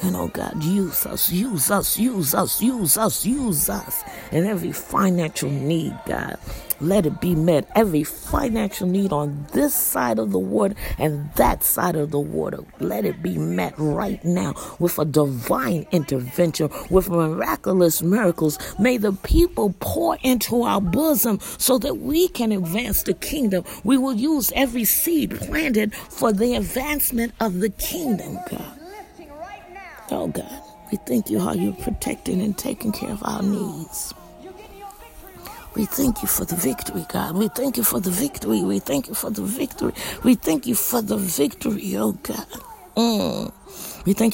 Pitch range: 175-250 Hz